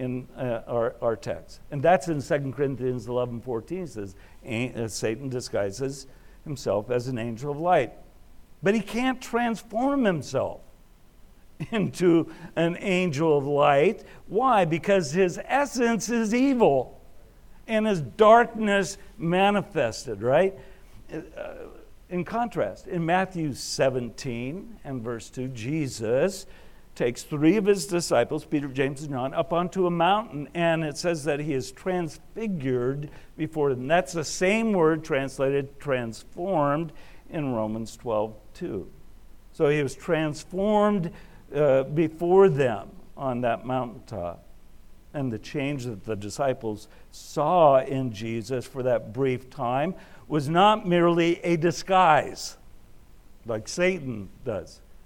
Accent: American